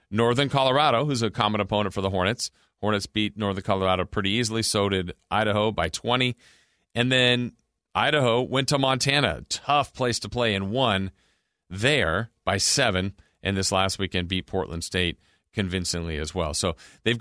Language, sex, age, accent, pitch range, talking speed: English, male, 40-59, American, 95-120 Hz, 165 wpm